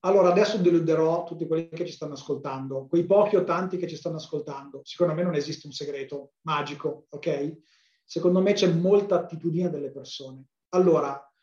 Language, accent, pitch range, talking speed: Italian, native, 150-175 Hz, 175 wpm